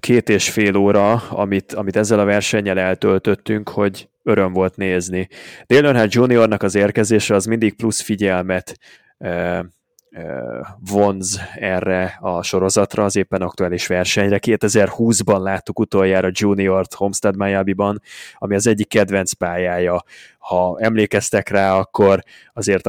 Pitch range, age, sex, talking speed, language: 95-110 Hz, 20-39, male, 130 wpm, Hungarian